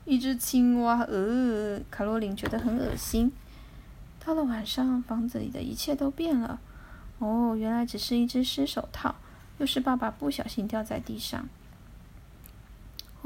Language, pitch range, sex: Chinese, 230-265 Hz, female